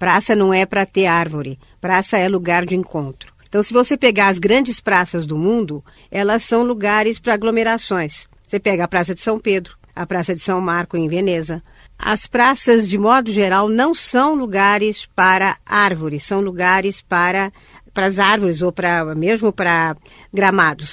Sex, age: female, 50-69